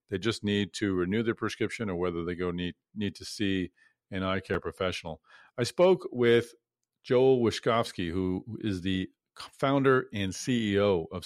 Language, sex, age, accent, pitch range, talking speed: English, male, 40-59, American, 95-115 Hz, 165 wpm